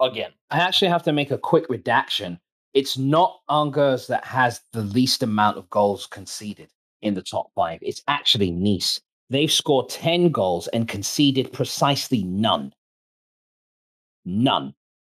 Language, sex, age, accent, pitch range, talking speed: English, male, 30-49, British, 95-130 Hz, 145 wpm